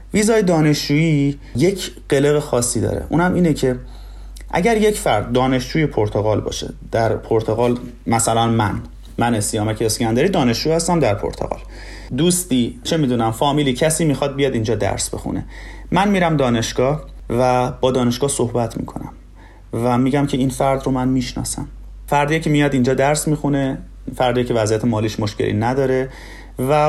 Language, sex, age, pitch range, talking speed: Persian, male, 30-49, 120-160 Hz, 145 wpm